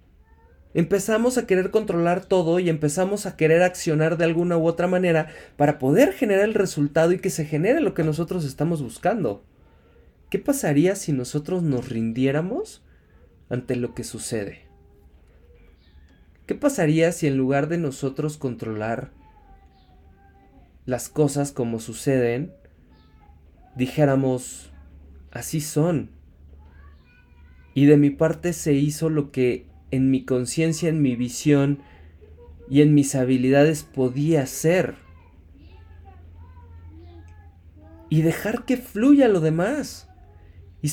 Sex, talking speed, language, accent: male, 120 wpm, Spanish, Mexican